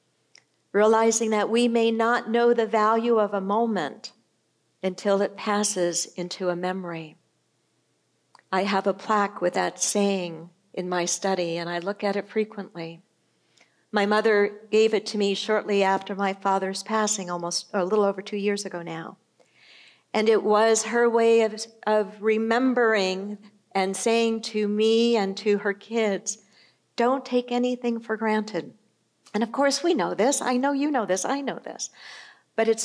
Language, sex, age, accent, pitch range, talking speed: English, female, 50-69, American, 200-245 Hz, 165 wpm